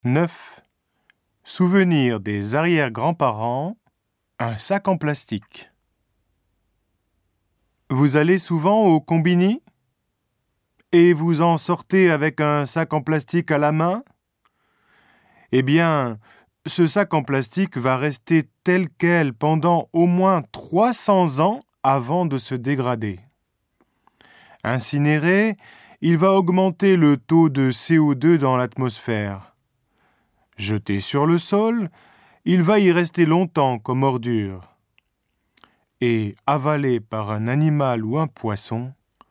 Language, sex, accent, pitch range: Japanese, male, French, 115-170 Hz